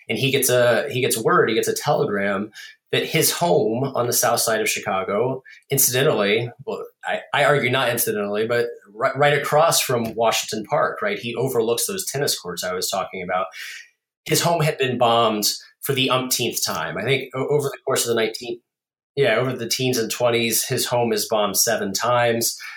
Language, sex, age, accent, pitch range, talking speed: English, male, 30-49, American, 110-145 Hz, 190 wpm